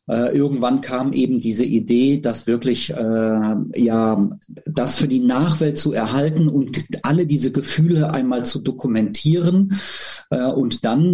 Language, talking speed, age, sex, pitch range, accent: German, 125 wpm, 40-59, male, 115-155 Hz, German